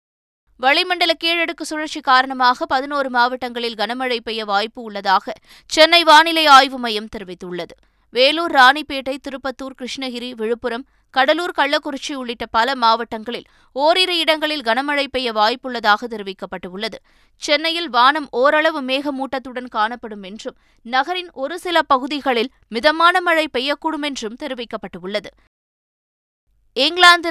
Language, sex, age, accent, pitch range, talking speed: Tamil, female, 20-39, native, 225-290 Hz, 105 wpm